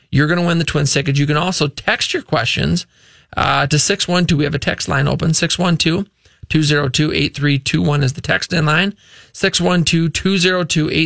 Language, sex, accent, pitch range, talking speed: English, male, American, 145-185 Hz, 175 wpm